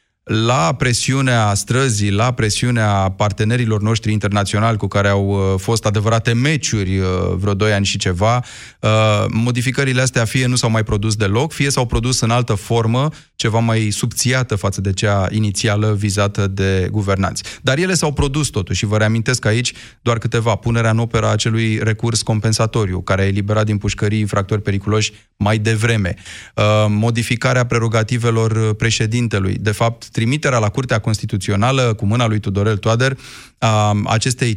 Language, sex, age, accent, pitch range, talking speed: Romanian, male, 30-49, native, 105-120 Hz, 155 wpm